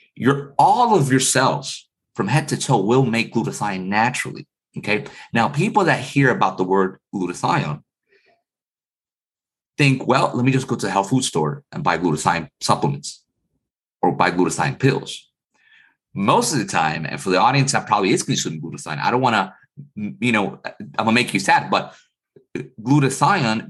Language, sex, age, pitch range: English, male, 30-49, 100-140 Hz